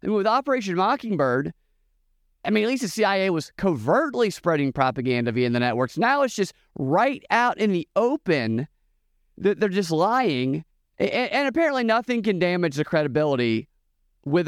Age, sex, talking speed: 30-49, male, 150 wpm